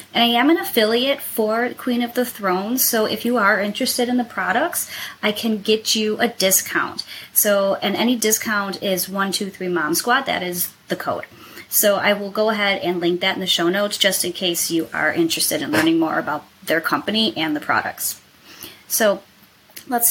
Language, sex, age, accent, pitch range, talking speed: English, female, 20-39, American, 190-250 Hz, 190 wpm